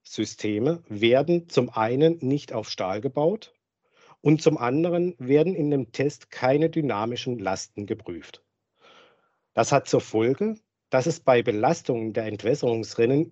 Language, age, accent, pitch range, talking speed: German, 50-69, German, 115-160 Hz, 130 wpm